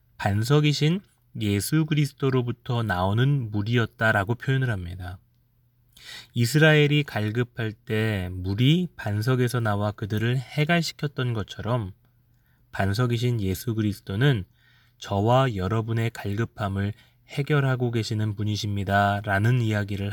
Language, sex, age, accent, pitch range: Korean, male, 20-39, native, 105-135 Hz